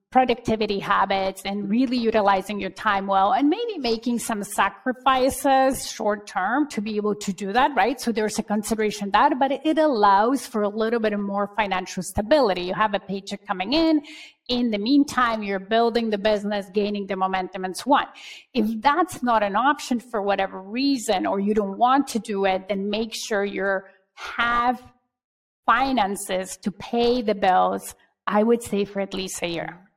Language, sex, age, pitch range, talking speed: English, female, 30-49, 200-240 Hz, 180 wpm